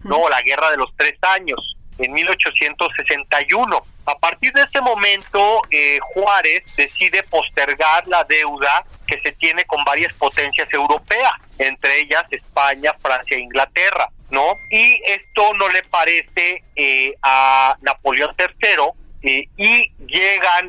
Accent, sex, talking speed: Mexican, male, 130 wpm